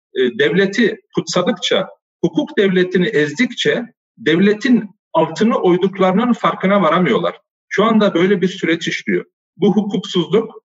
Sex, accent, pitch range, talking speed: male, native, 180-225 Hz, 100 wpm